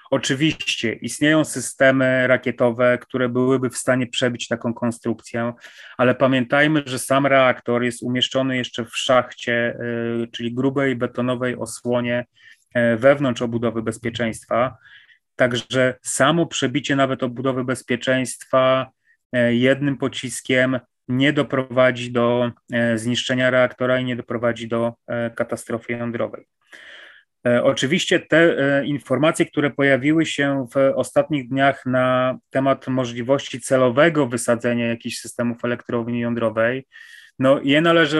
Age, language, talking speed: 30-49, Polish, 105 wpm